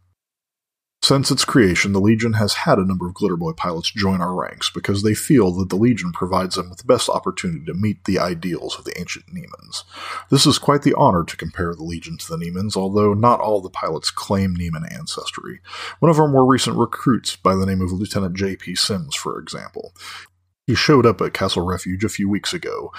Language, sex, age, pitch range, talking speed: English, male, 30-49, 95-115 Hz, 210 wpm